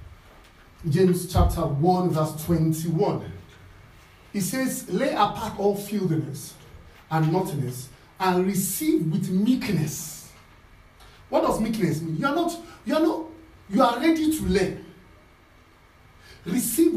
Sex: male